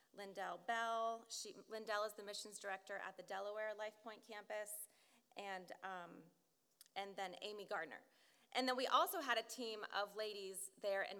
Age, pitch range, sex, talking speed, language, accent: 30-49, 195-240 Hz, female, 165 wpm, English, American